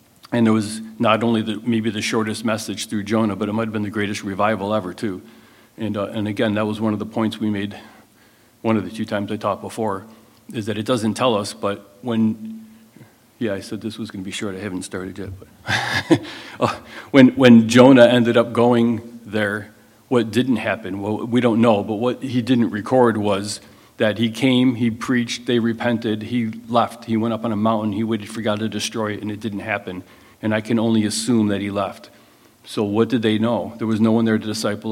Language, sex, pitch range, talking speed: English, male, 105-115 Hz, 220 wpm